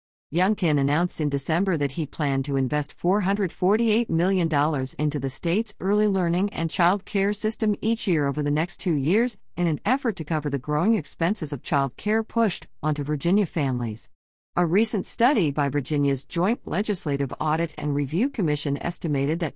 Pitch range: 140-185 Hz